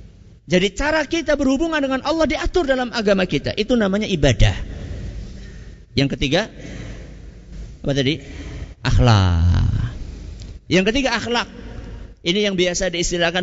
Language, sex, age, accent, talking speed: Indonesian, male, 50-69, native, 110 wpm